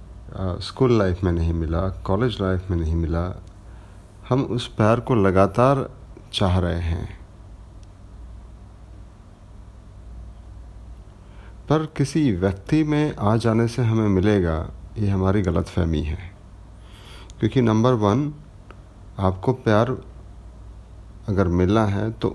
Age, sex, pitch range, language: 50-69, male, 95-115 Hz, Hindi